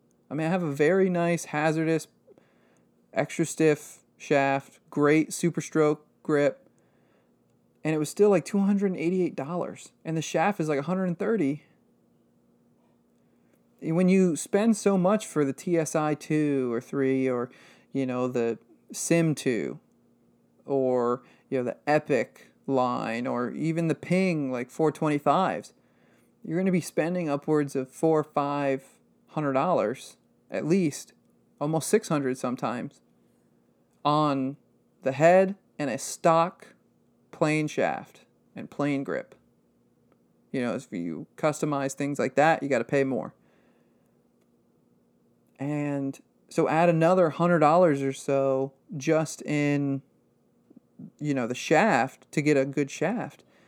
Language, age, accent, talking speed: English, 40-59, American, 125 wpm